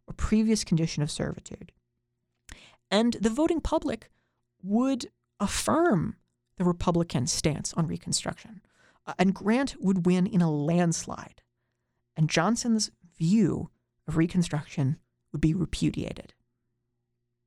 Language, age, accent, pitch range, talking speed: English, 40-59, American, 130-185 Hz, 105 wpm